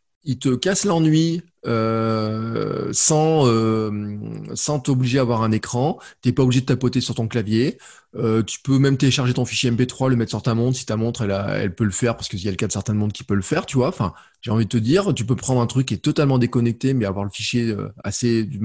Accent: French